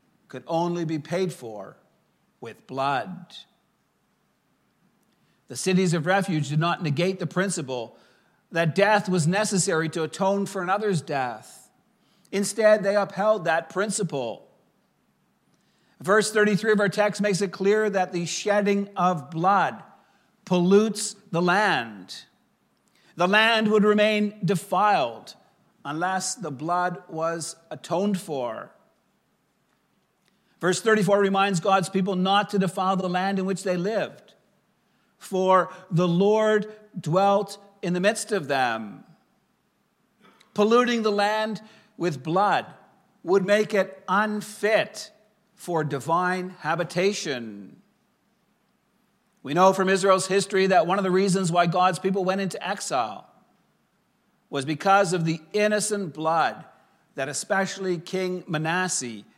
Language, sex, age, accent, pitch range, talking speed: English, male, 50-69, American, 175-205 Hz, 120 wpm